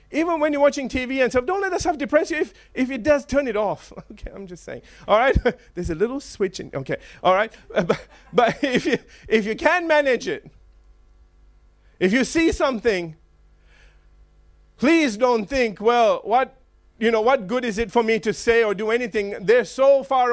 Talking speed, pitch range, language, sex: 200 wpm, 180-270 Hz, English, male